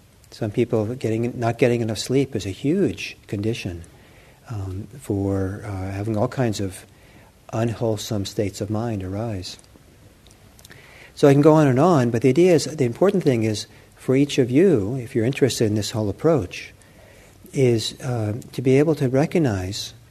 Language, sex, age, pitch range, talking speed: English, male, 50-69, 105-125 Hz, 165 wpm